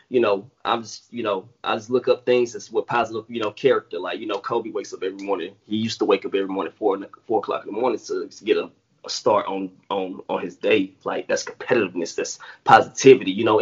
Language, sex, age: English, male, 20-39